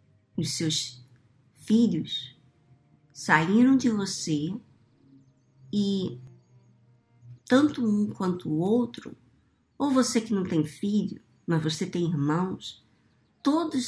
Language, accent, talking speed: Portuguese, Brazilian, 100 wpm